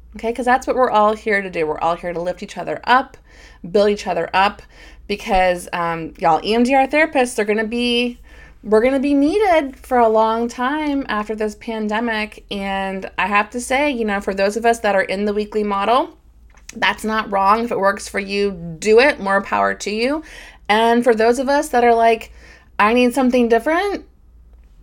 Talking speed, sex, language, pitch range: 205 wpm, female, English, 190-245 Hz